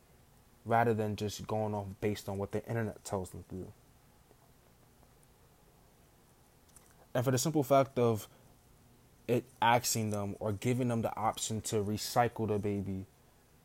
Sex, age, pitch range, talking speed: male, 20-39, 100-120 Hz, 140 wpm